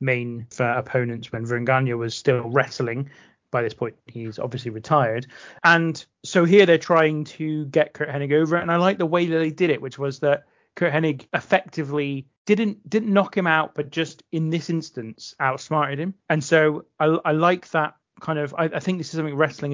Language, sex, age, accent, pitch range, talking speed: English, male, 30-49, British, 135-160 Hz, 200 wpm